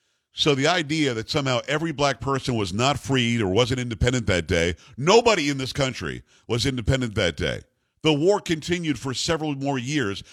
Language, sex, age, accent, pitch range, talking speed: English, male, 50-69, American, 115-145 Hz, 180 wpm